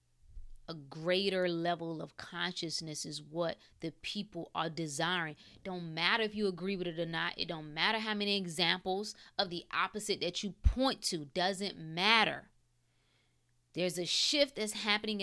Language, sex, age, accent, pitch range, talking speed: English, female, 20-39, American, 170-255 Hz, 160 wpm